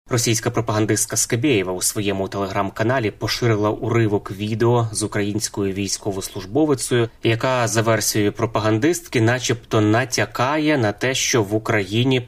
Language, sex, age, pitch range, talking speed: Ukrainian, male, 20-39, 100-120 Hz, 110 wpm